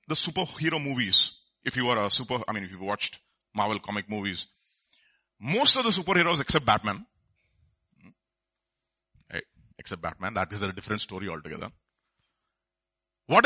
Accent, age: Indian, 40-59